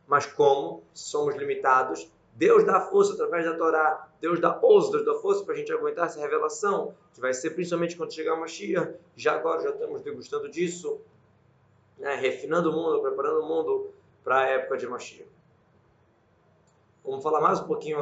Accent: Brazilian